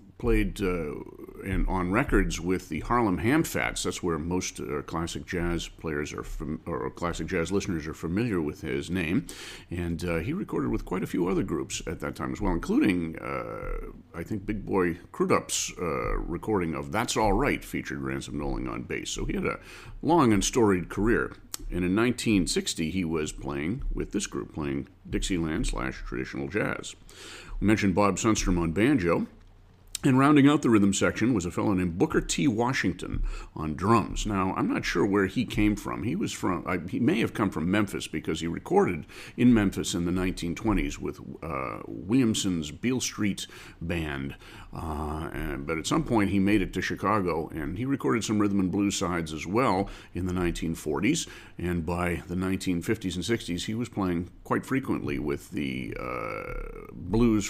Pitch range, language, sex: 85-105 Hz, English, male